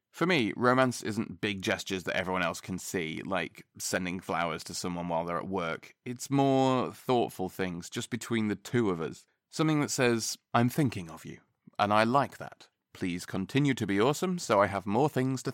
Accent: British